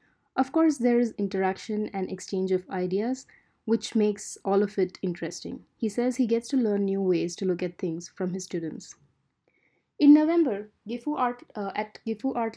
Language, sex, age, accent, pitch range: Japanese, female, 20-39, Indian, 190-245 Hz